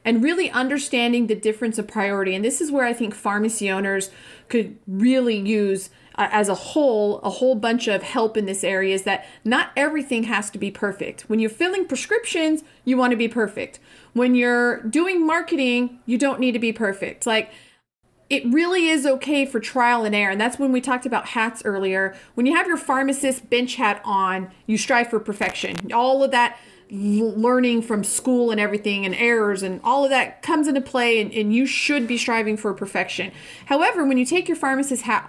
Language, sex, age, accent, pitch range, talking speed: English, female, 40-59, American, 210-260 Hz, 200 wpm